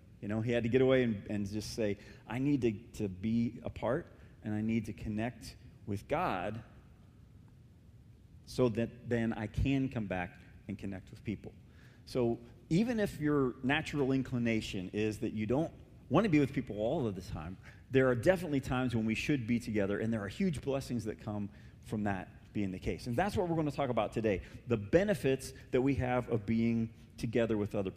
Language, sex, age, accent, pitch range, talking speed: English, male, 40-59, American, 110-135 Hz, 205 wpm